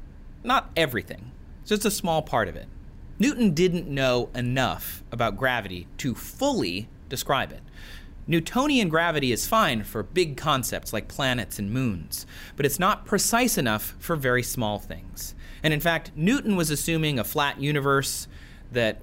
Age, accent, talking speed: 30-49, American, 150 wpm